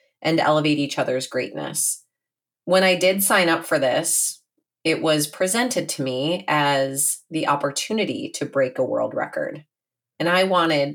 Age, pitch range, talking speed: 30-49, 150-185 Hz, 155 wpm